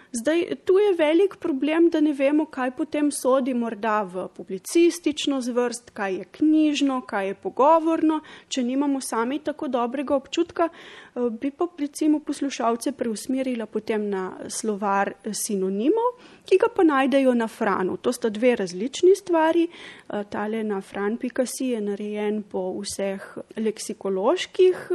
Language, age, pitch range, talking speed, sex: Italian, 30-49, 210-300 Hz, 130 wpm, female